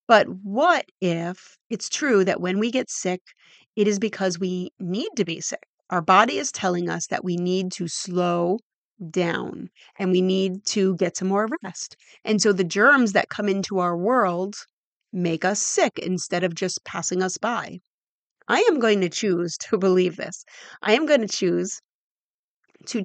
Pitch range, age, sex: 180-225 Hz, 30-49, female